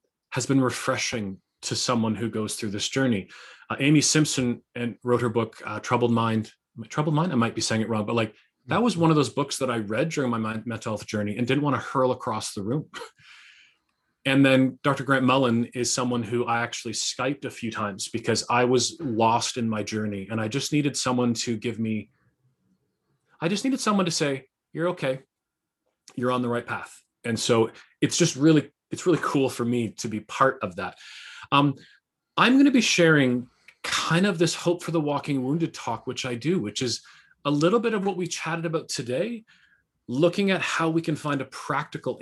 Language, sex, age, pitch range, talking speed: English, male, 30-49, 115-145 Hz, 205 wpm